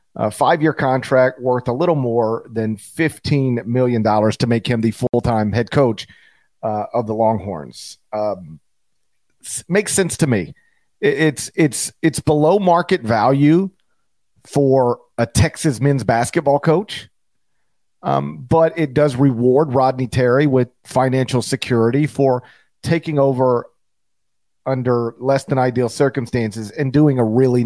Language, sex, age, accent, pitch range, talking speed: English, male, 40-59, American, 115-150 Hz, 130 wpm